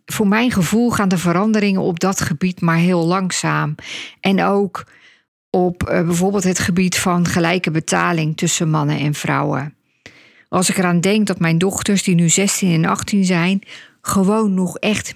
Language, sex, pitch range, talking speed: Dutch, female, 165-200 Hz, 160 wpm